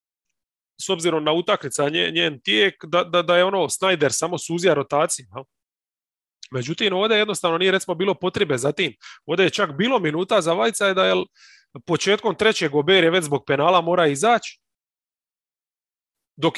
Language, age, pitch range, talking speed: English, 30-49, 135-190 Hz, 160 wpm